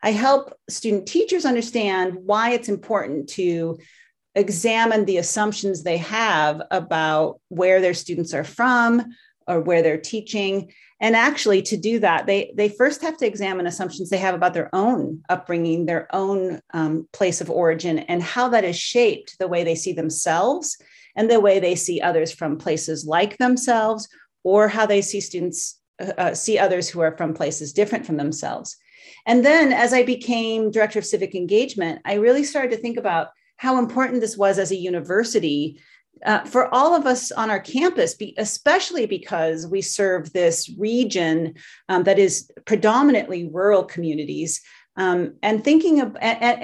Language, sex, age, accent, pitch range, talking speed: English, female, 40-59, American, 175-235 Hz, 165 wpm